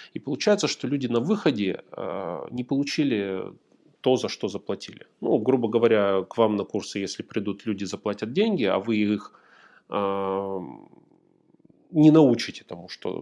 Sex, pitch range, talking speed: male, 100-130 Hz, 150 wpm